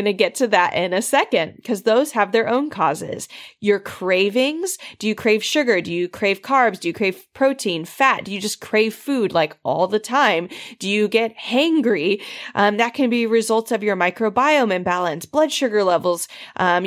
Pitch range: 190-250 Hz